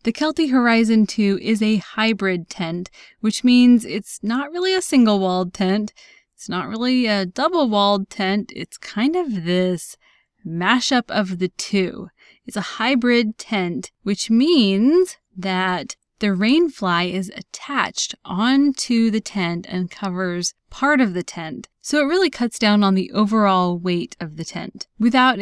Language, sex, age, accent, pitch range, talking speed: English, female, 20-39, American, 190-245 Hz, 150 wpm